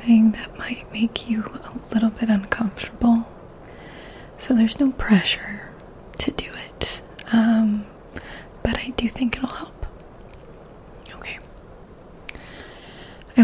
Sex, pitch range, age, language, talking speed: female, 205-235 Hz, 20-39, English, 110 wpm